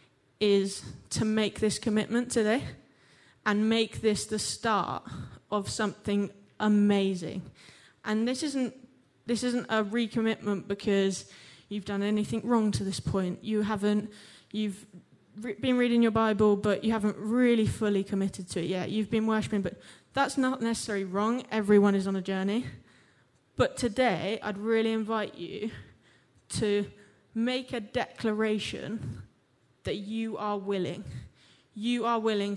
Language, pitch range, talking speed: English, 185-225 Hz, 140 wpm